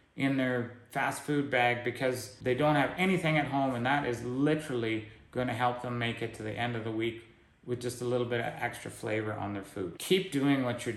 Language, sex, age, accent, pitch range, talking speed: English, male, 30-49, American, 110-130 Hz, 235 wpm